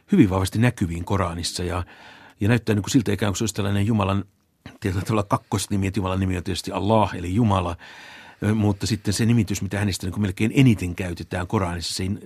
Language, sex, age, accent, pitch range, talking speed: Finnish, male, 60-79, native, 90-105 Hz, 175 wpm